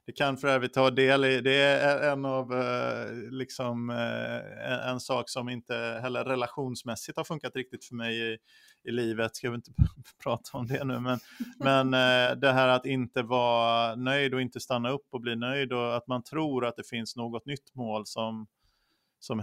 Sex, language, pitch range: male, Swedish, 120-135 Hz